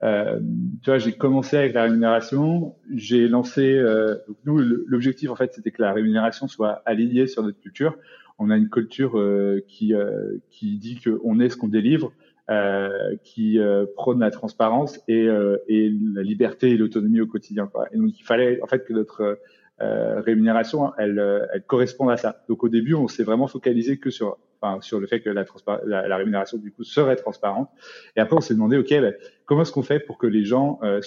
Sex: male